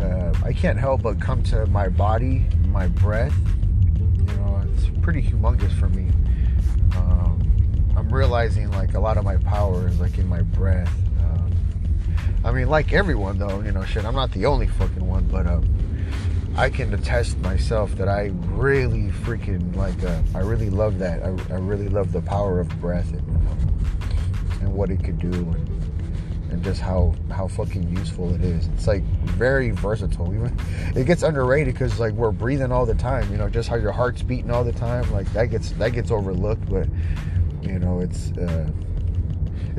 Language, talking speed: English, 180 wpm